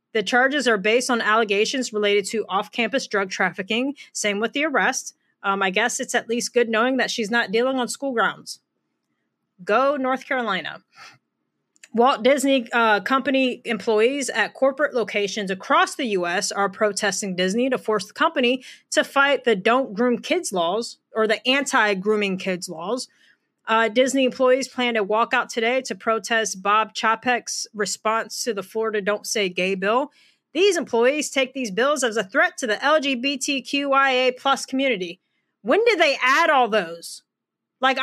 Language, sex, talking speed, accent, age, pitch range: English, female, 160 wpm, American, 30-49, 215-270 Hz